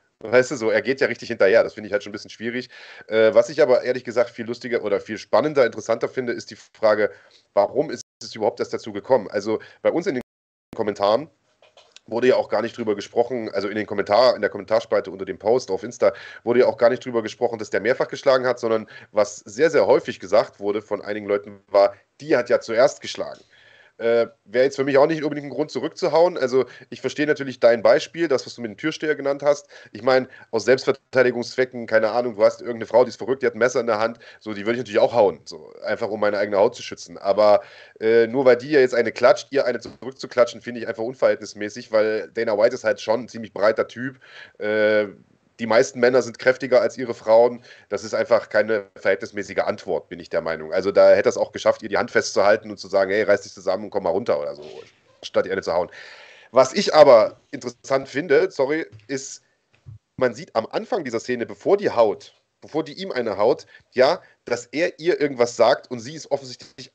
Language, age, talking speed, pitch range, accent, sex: German, 30-49, 230 wpm, 110-145 Hz, German, male